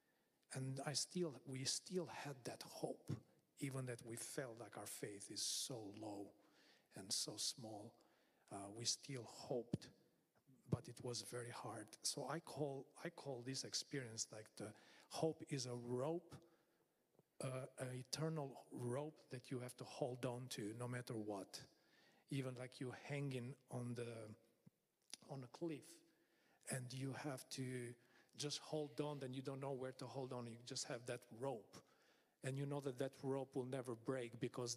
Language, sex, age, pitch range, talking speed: Finnish, male, 40-59, 120-140 Hz, 165 wpm